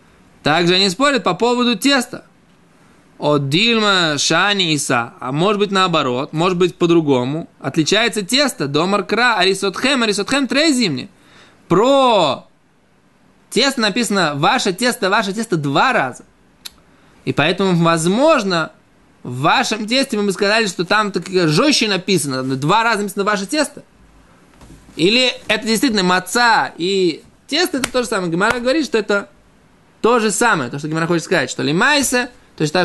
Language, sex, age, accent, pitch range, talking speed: Russian, male, 20-39, native, 155-220 Hz, 145 wpm